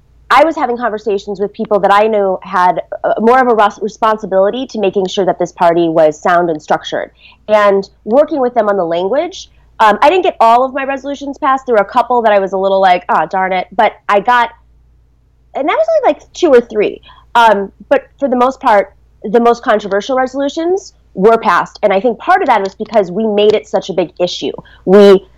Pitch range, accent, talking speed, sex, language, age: 195-255 Hz, American, 225 wpm, female, English, 30-49